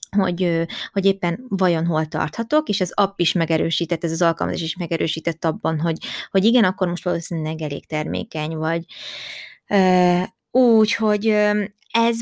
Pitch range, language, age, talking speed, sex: 165-220 Hz, Hungarian, 20-39, 140 wpm, female